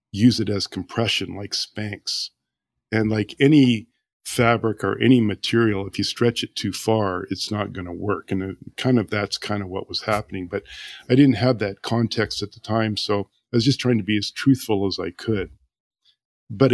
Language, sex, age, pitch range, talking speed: English, male, 50-69, 100-120 Hz, 195 wpm